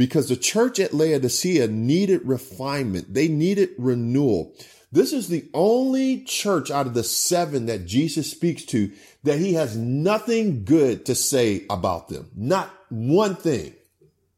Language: English